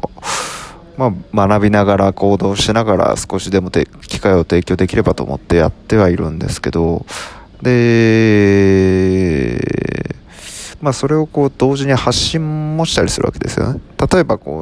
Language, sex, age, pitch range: Japanese, male, 20-39, 95-125 Hz